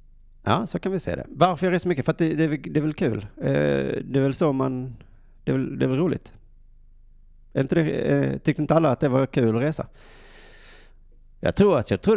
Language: Swedish